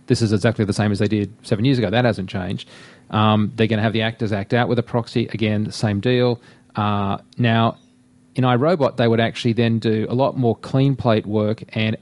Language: English